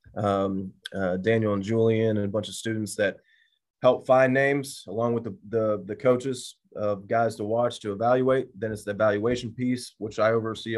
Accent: American